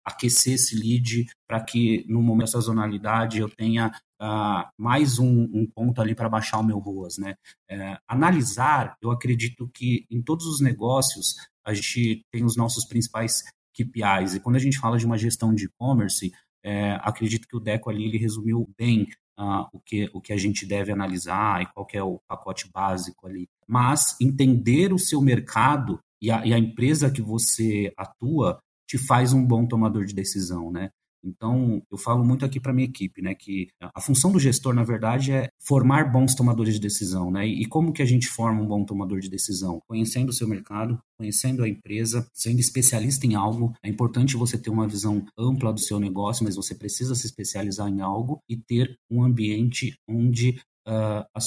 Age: 30-49